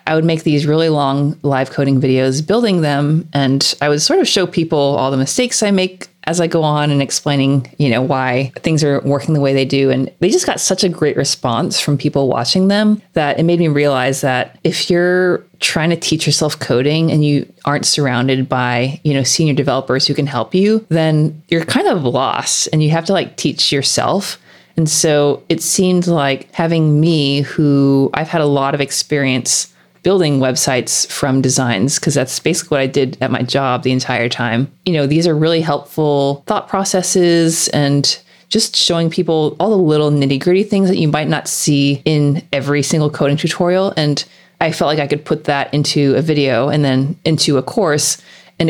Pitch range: 140-165 Hz